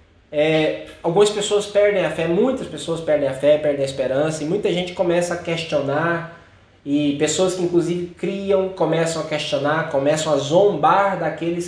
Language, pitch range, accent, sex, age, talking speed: Portuguese, 145-190 Hz, Brazilian, male, 20-39, 165 wpm